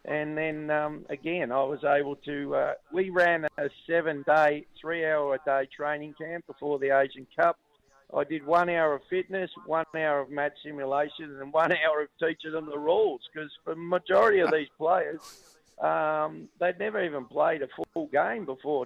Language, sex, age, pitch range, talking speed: English, male, 50-69, 150-175 Hz, 170 wpm